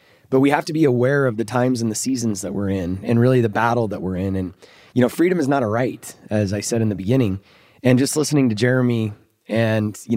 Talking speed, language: 255 wpm, English